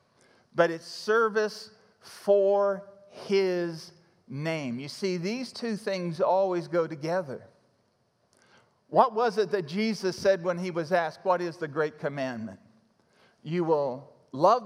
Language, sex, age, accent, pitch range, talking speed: English, male, 50-69, American, 155-200 Hz, 130 wpm